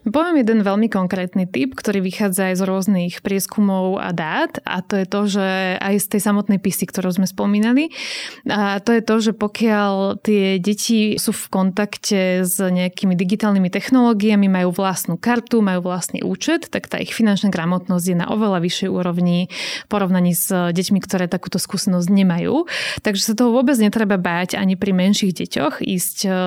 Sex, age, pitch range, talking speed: female, 20-39, 185-210 Hz, 170 wpm